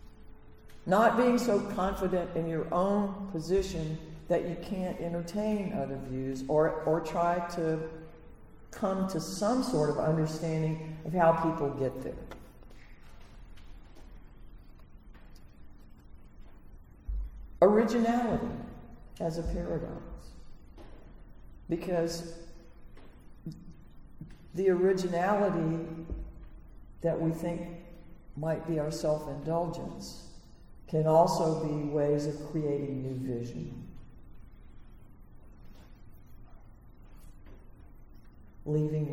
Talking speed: 80 wpm